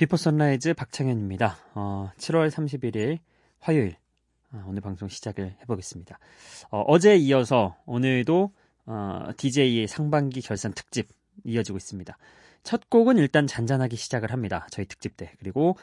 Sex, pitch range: male, 100-165 Hz